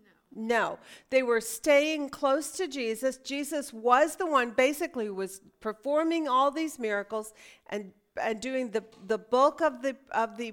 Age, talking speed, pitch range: 40-59, 155 wpm, 225-305 Hz